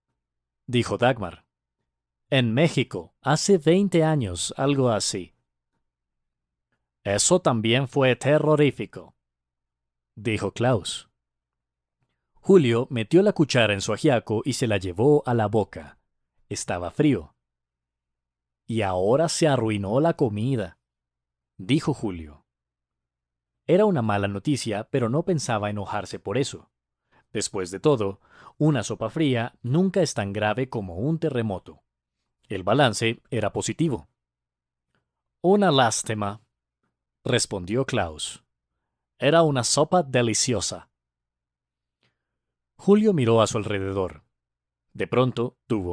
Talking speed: 105 wpm